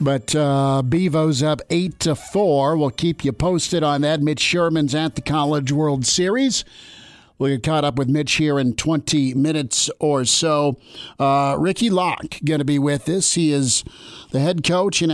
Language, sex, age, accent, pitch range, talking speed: English, male, 50-69, American, 140-160 Hz, 180 wpm